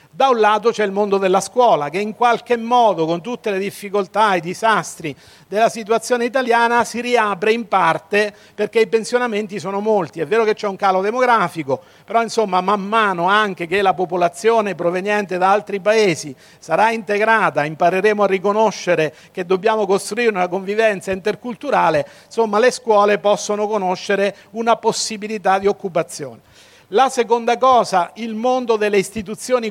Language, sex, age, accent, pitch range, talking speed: Italian, male, 50-69, native, 190-225 Hz, 155 wpm